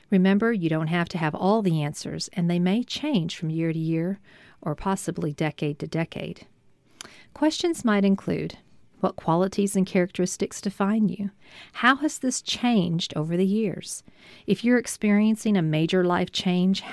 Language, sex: English, female